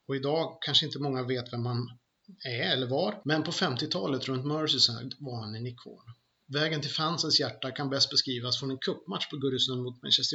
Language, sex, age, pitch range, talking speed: Swedish, male, 30-49, 125-145 Hz, 195 wpm